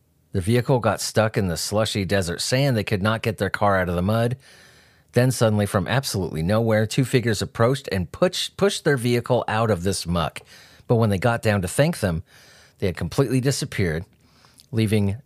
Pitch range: 100-130 Hz